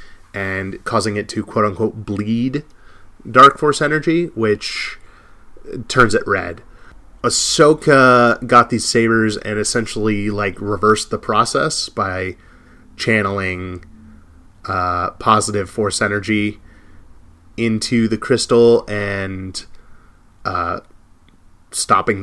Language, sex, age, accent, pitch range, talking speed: English, male, 30-49, American, 100-125 Hz, 95 wpm